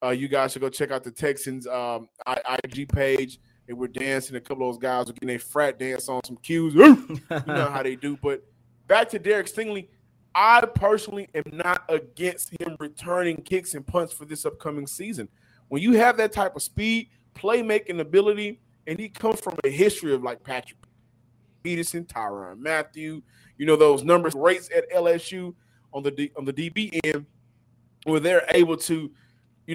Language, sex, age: English, male, 20-39